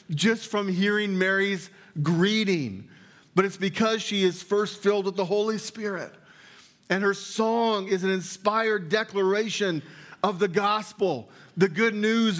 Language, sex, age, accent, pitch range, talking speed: English, male, 40-59, American, 125-195 Hz, 140 wpm